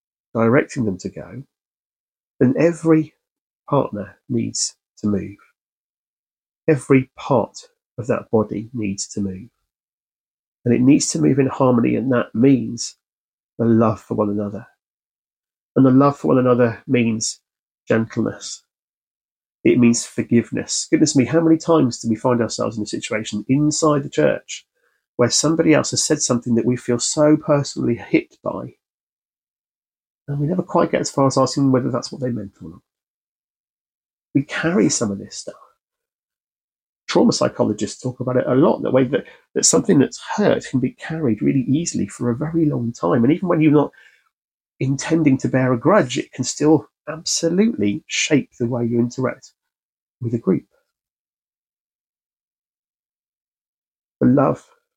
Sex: male